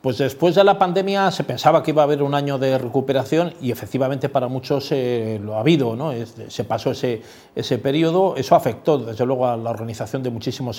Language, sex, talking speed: Spanish, male, 215 wpm